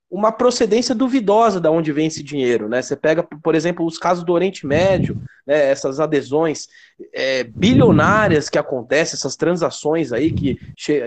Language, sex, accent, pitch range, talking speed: Polish, male, Brazilian, 170-230 Hz, 165 wpm